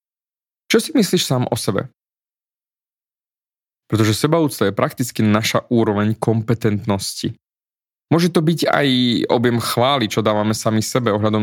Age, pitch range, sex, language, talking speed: 20-39, 110-145 Hz, male, Slovak, 125 wpm